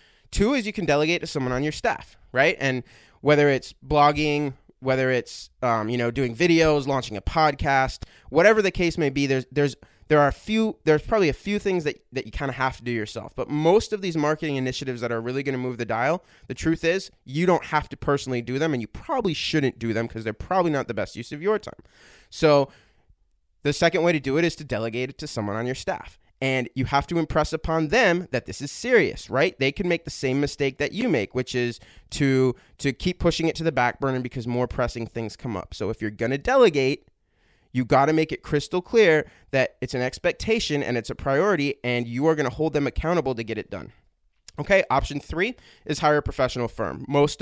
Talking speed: 235 wpm